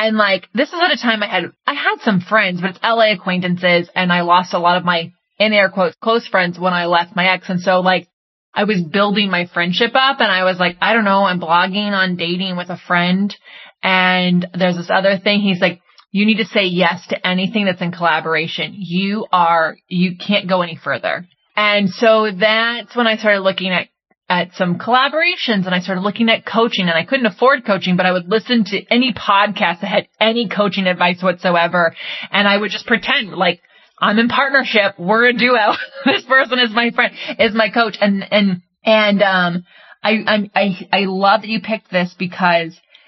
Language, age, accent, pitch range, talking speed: English, 20-39, American, 180-220 Hz, 210 wpm